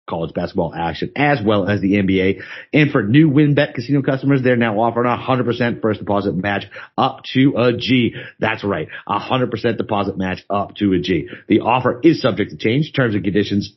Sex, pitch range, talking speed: male, 95-130 Hz, 190 wpm